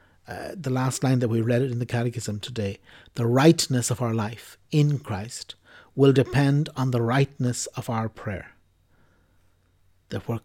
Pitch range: 110-140 Hz